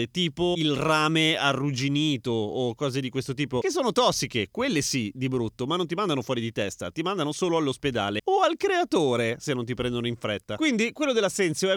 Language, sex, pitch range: Italian, male, 140-205 Hz